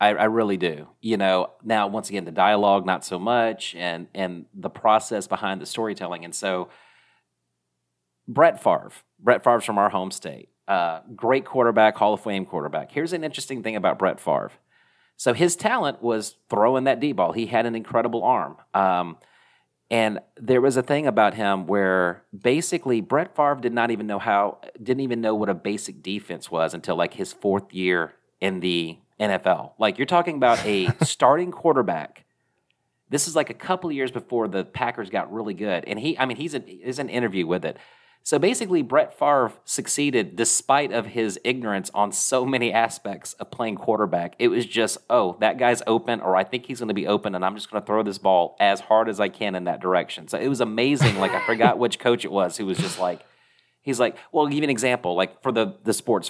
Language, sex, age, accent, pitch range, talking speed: English, male, 40-59, American, 95-125 Hz, 210 wpm